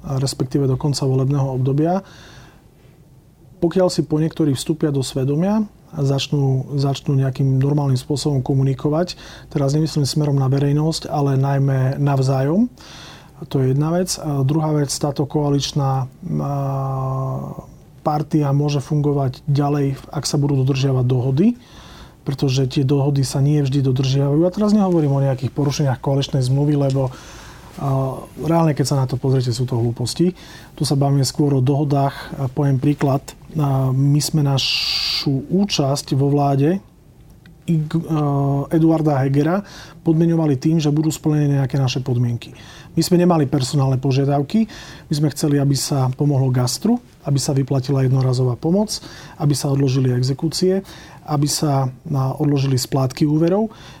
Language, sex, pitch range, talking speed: Slovak, male, 135-155 Hz, 135 wpm